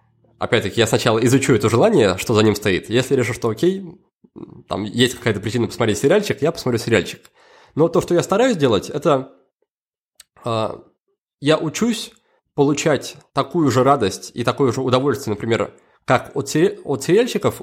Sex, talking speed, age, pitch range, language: male, 160 wpm, 20-39, 115-160 Hz, Russian